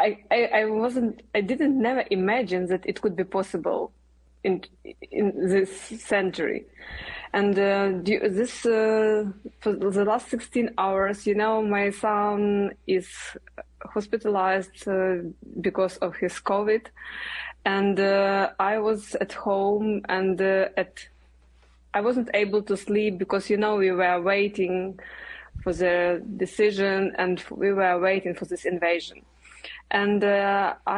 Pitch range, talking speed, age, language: 190-215 Hz, 130 wpm, 20-39, English